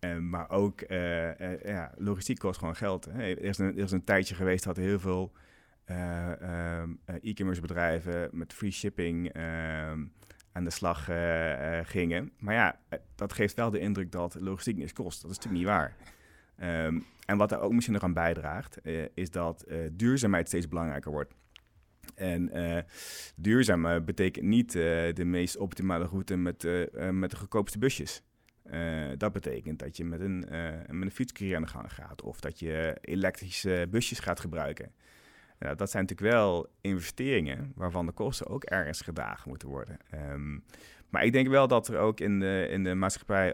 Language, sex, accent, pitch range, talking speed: Dutch, male, Dutch, 85-100 Hz, 185 wpm